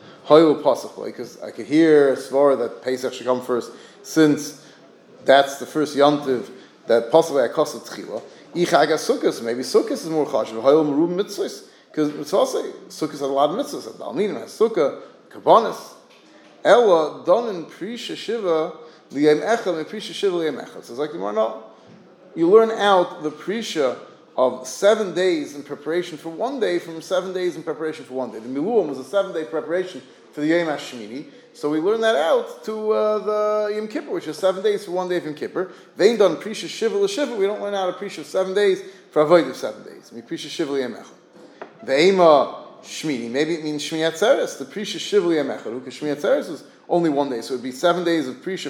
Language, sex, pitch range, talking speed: English, male, 150-205 Hz, 185 wpm